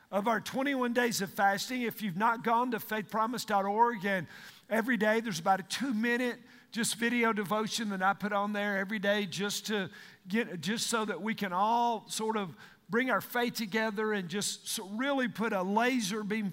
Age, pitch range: 50-69, 200-240 Hz